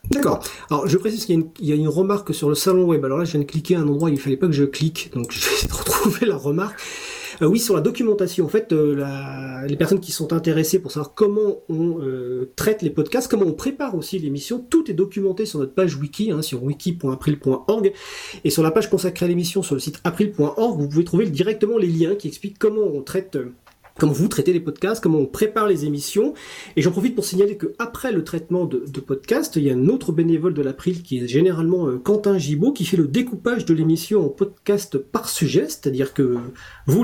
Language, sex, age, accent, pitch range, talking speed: French, male, 40-59, French, 145-200 Hz, 235 wpm